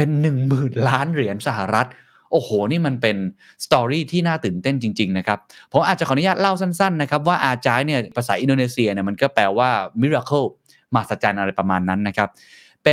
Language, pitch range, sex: Thai, 105-145 Hz, male